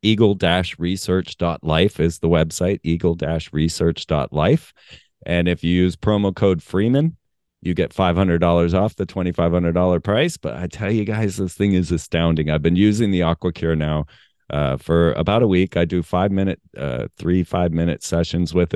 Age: 40-59